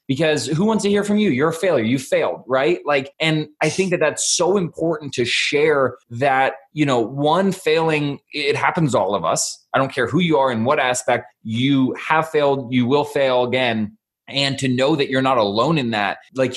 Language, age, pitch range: English, 20-39, 125-170 Hz